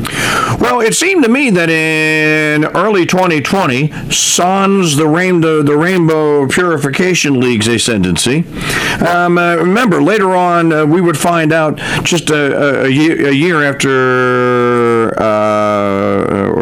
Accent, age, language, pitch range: American, 50-69, English, 125-175 Hz